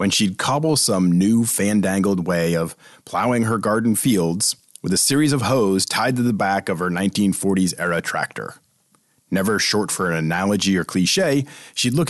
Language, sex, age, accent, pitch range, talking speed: English, male, 40-59, American, 95-135 Hz, 170 wpm